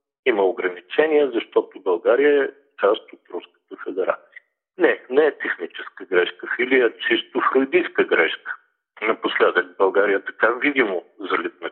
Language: Bulgarian